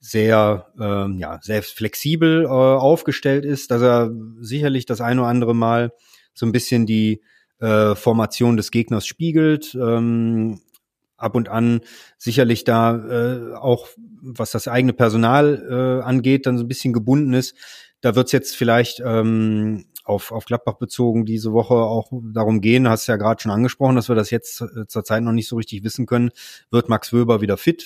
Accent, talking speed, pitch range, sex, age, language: German, 175 wpm, 110-130 Hz, male, 30-49, German